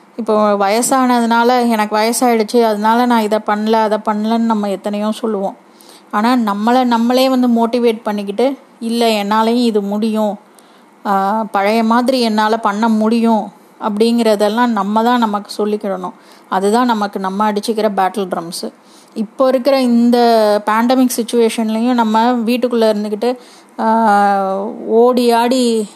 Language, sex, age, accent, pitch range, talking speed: Tamil, female, 20-39, native, 210-240 Hz, 115 wpm